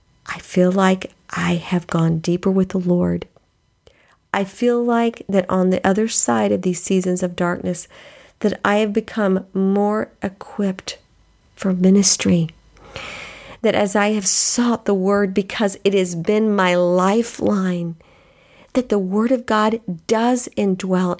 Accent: American